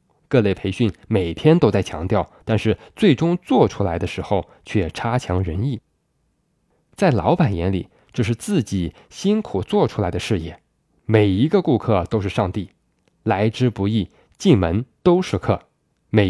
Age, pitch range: 20-39, 95-135 Hz